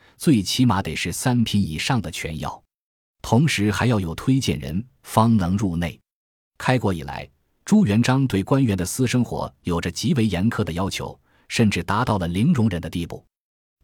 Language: Chinese